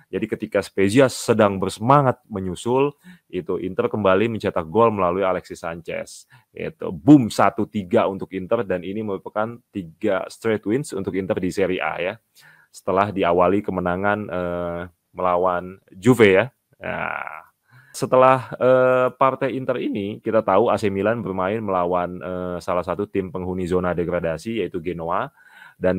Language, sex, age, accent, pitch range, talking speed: Indonesian, male, 20-39, native, 90-110 Hz, 140 wpm